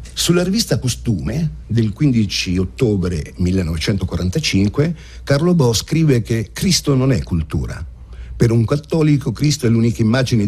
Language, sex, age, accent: Italian, male, 50-69, native